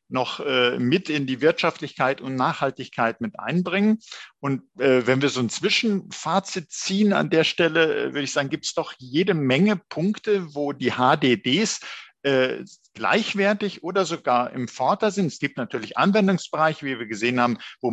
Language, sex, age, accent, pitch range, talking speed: German, male, 50-69, German, 125-170 Hz, 165 wpm